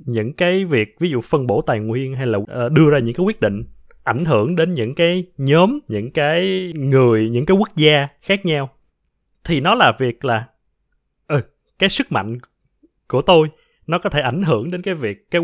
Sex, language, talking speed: male, Vietnamese, 200 wpm